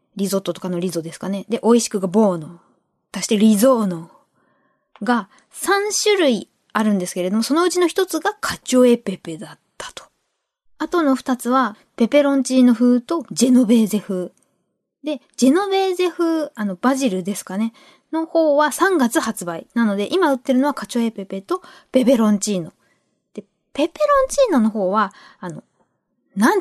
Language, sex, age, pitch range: Japanese, female, 20-39, 200-285 Hz